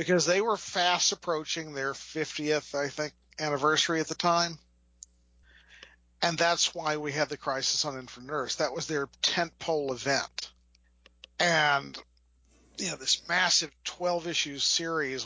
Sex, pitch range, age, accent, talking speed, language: male, 125-175 Hz, 50-69, American, 135 wpm, English